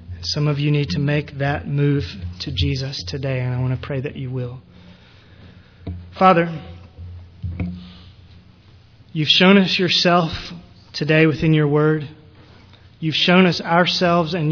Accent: American